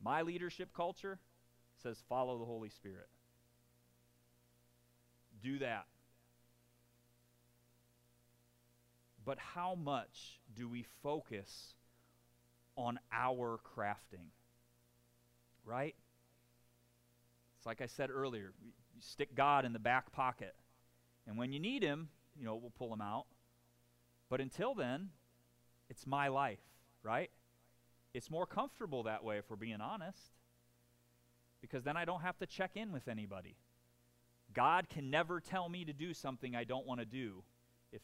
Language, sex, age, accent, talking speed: English, male, 30-49, American, 130 wpm